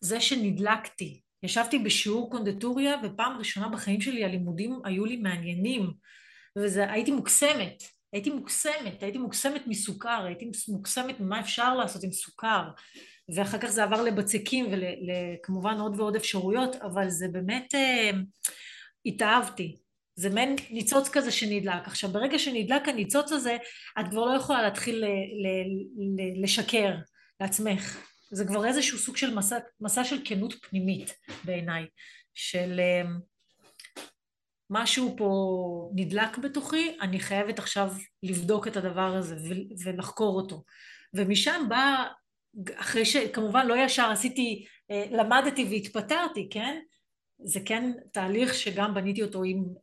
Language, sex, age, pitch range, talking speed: Hebrew, female, 30-49, 190-240 Hz, 125 wpm